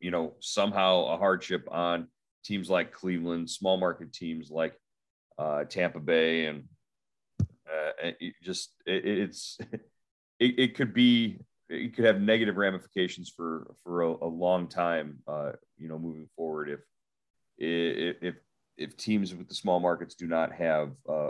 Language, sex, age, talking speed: English, male, 30-49, 150 wpm